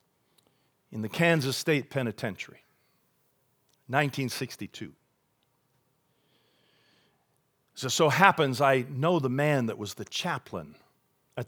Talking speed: 95 wpm